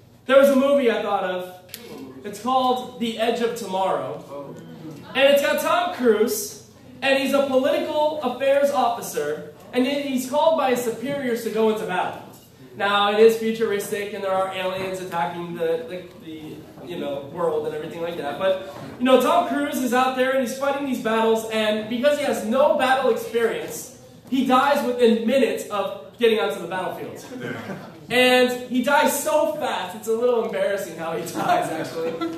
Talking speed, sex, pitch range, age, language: 175 wpm, male, 200-255 Hz, 20-39, English